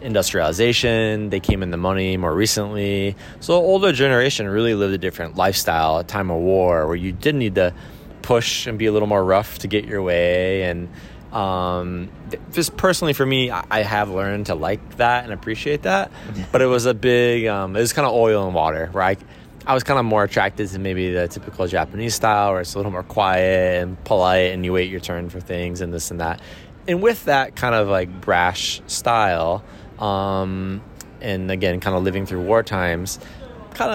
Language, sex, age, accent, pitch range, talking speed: English, male, 20-39, American, 90-110 Hz, 200 wpm